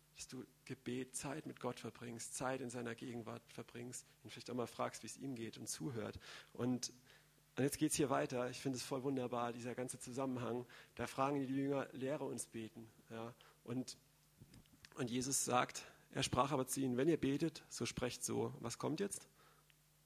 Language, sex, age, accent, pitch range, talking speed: German, male, 40-59, German, 120-140 Hz, 190 wpm